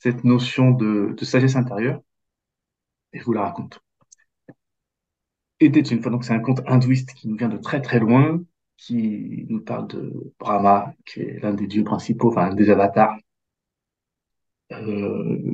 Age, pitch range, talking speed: 40-59, 110-130 Hz, 165 wpm